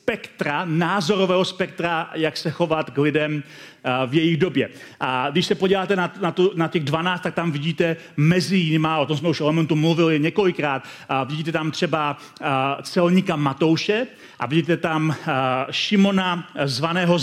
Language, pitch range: Czech, 165-200 Hz